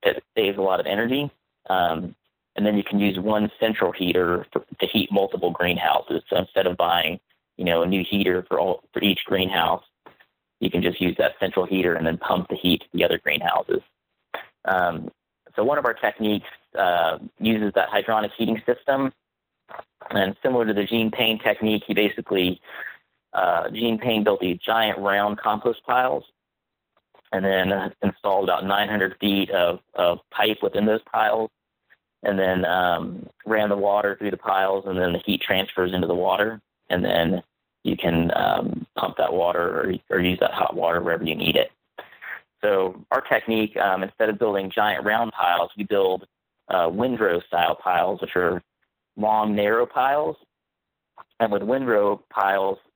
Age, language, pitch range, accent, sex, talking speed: 30-49, English, 95-110 Hz, American, male, 170 wpm